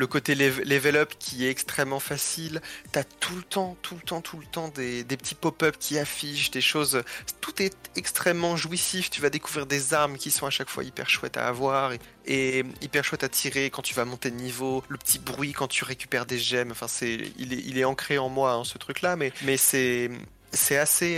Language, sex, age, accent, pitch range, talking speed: French, male, 20-39, French, 125-150 Hz, 230 wpm